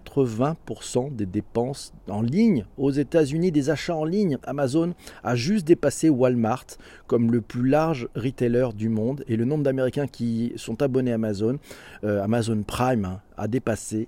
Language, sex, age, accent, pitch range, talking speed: French, male, 40-59, French, 100-130 Hz, 160 wpm